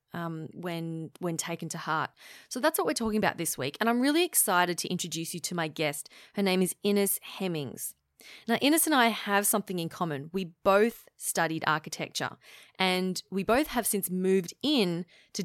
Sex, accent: female, Australian